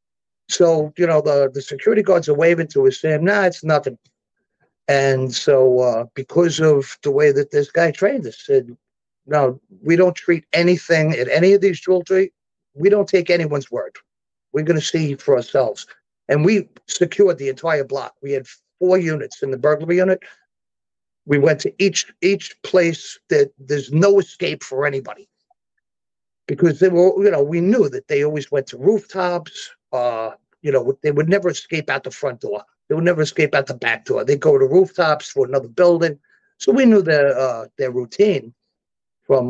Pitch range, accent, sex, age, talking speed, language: 135-195 Hz, American, male, 50-69, 185 wpm, English